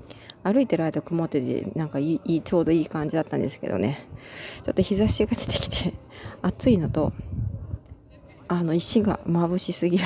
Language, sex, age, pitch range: Japanese, female, 40-59, 145-195 Hz